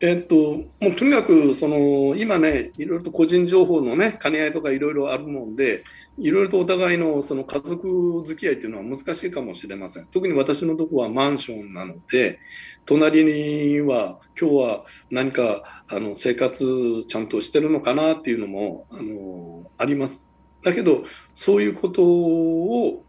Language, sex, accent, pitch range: Japanese, male, native, 110-160 Hz